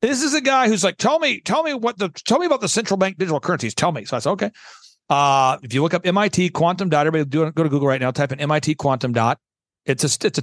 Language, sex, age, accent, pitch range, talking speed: English, male, 40-59, American, 145-210 Hz, 290 wpm